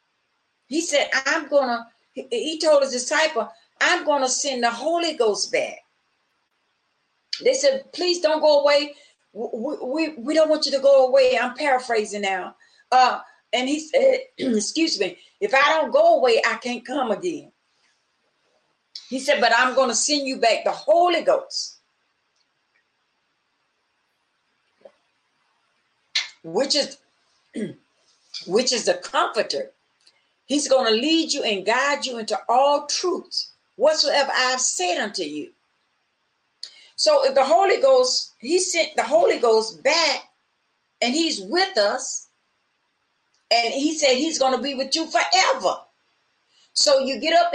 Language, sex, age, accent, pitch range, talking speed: English, female, 40-59, American, 245-320 Hz, 145 wpm